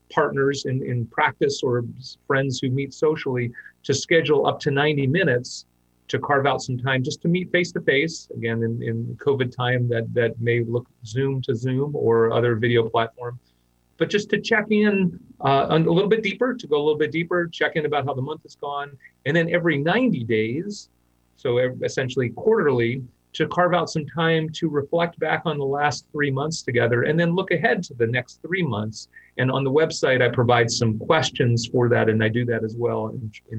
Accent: American